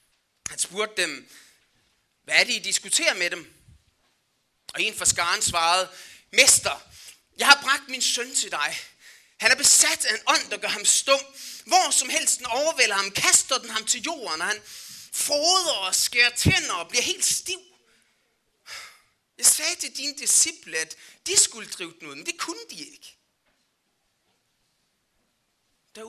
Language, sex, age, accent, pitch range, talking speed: Danish, male, 30-49, native, 215-315 Hz, 160 wpm